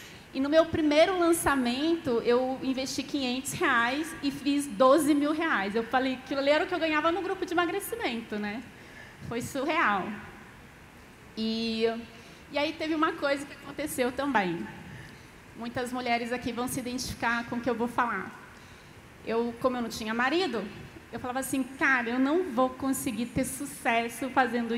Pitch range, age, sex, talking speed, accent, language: 235-295 Hz, 30-49, female, 160 wpm, Brazilian, Portuguese